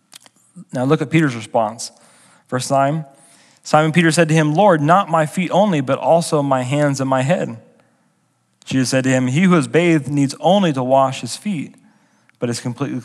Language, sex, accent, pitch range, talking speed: English, male, American, 130-165 Hz, 190 wpm